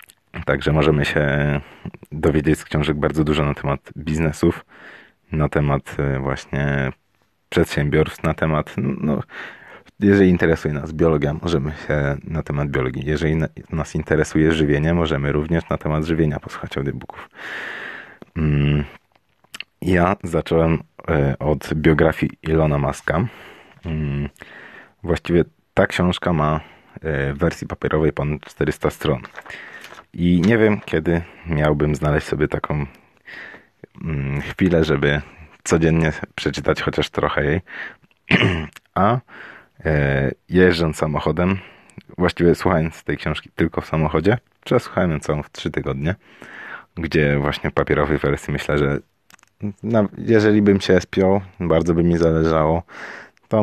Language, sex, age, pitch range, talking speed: Polish, male, 30-49, 75-85 Hz, 115 wpm